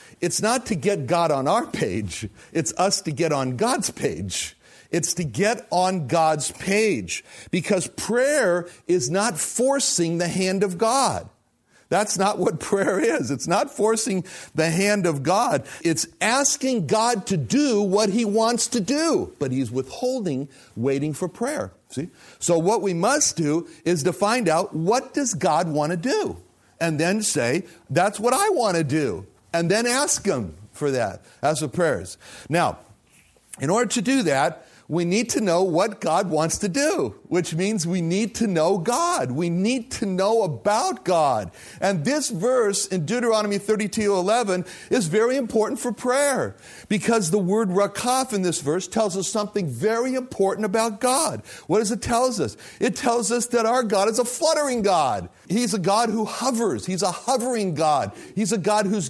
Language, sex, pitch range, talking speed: English, male, 170-235 Hz, 180 wpm